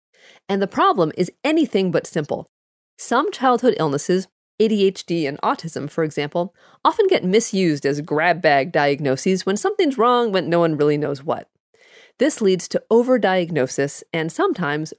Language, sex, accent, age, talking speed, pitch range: English, female, American, 40-59, 150 wpm, 160-240 Hz